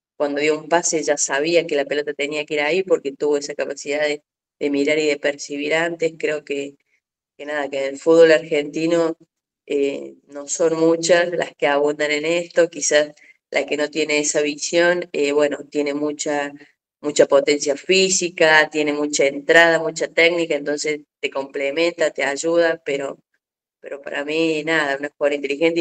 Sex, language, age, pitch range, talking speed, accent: female, Spanish, 20-39, 140-160 Hz, 170 wpm, Argentinian